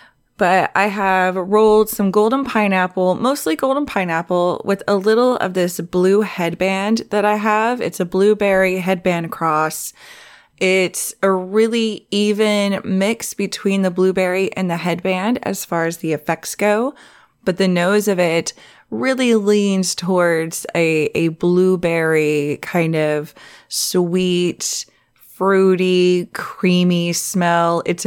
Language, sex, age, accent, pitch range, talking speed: English, female, 20-39, American, 165-205 Hz, 130 wpm